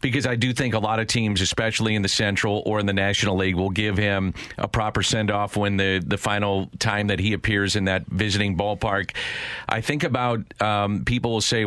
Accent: American